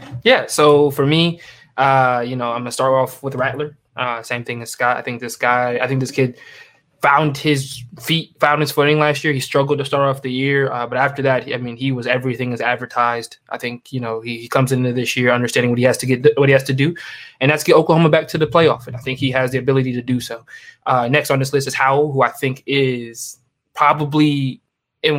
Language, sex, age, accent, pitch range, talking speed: English, male, 20-39, American, 125-145 Hz, 250 wpm